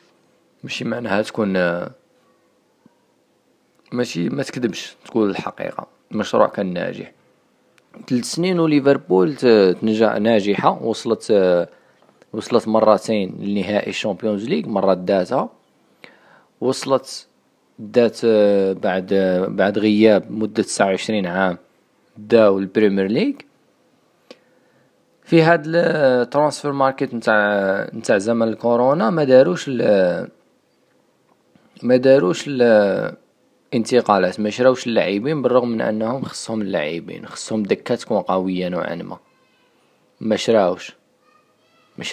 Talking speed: 90 wpm